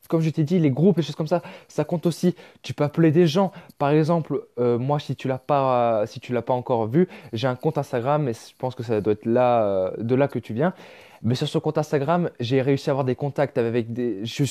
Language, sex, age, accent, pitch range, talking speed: French, male, 20-39, French, 125-155 Hz, 270 wpm